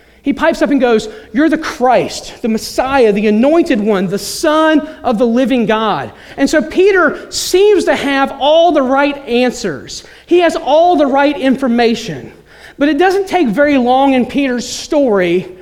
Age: 30-49